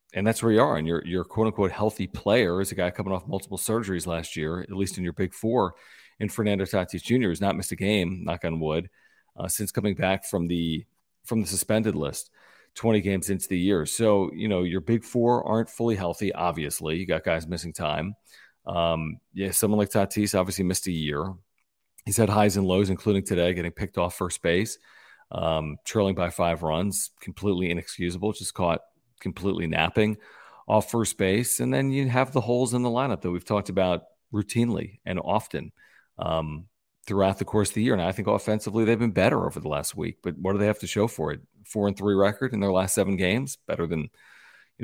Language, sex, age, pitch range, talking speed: English, male, 40-59, 90-110 Hz, 215 wpm